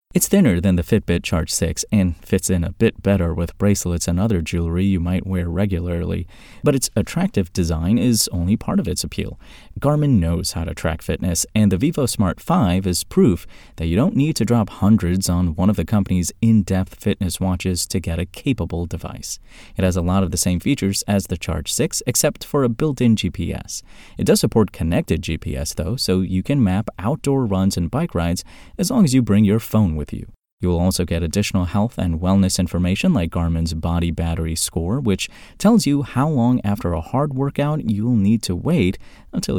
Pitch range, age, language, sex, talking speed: 85-115 Hz, 30-49, English, male, 205 wpm